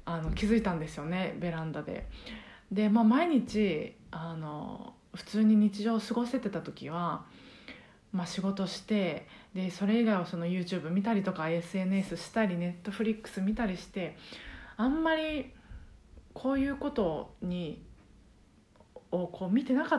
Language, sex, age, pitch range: Japanese, female, 20-39, 180-250 Hz